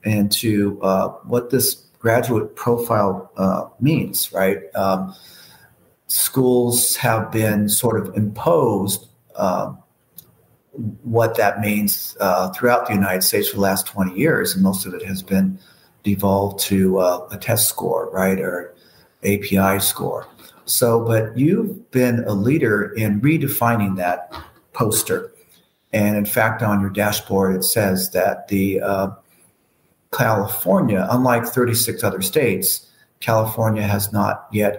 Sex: male